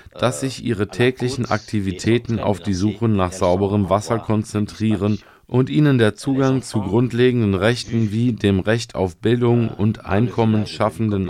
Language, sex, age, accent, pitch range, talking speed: German, male, 40-59, German, 100-120 Hz, 140 wpm